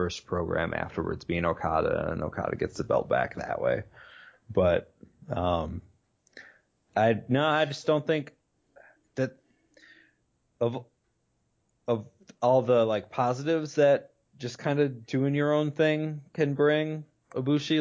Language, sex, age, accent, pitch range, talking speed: English, male, 20-39, American, 90-120 Hz, 130 wpm